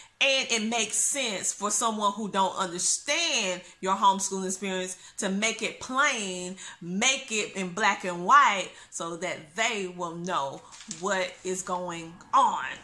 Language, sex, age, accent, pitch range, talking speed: English, female, 30-49, American, 190-275 Hz, 145 wpm